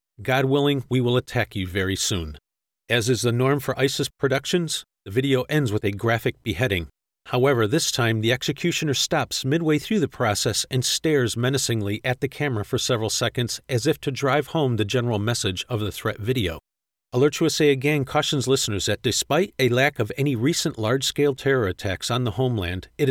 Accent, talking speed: American, 185 wpm